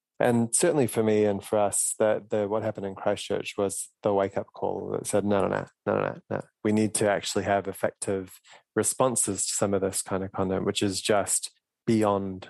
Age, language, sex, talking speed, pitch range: 20-39, English, male, 205 wpm, 95-110 Hz